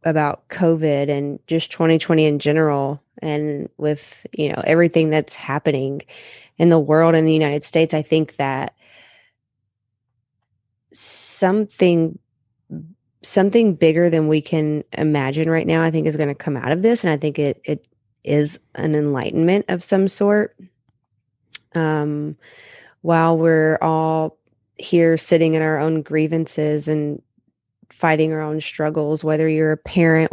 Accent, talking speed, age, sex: American, 140 wpm, 20-39, female